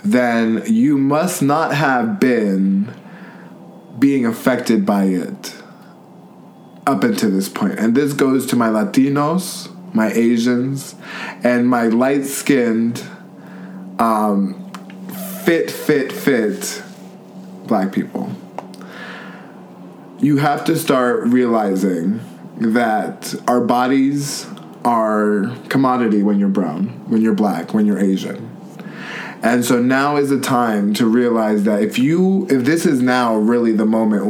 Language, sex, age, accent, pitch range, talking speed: English, male, 20-39, American, 110-140 Hz, 115 wpm